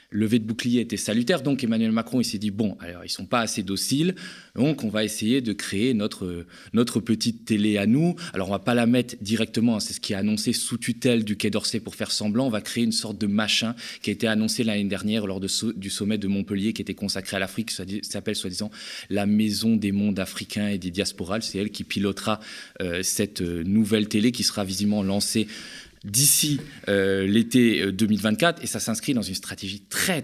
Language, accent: French, French